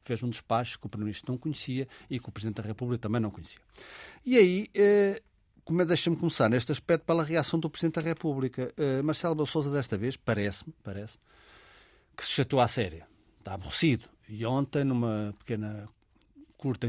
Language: Portuguese